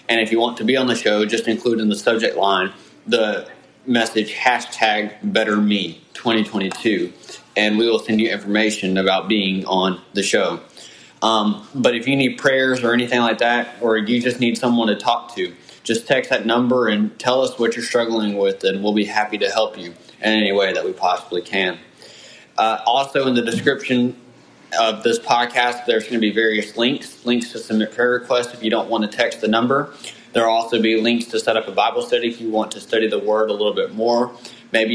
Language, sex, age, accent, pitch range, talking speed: English, male, 20-39, American, 105-120 Hz, 210 wpm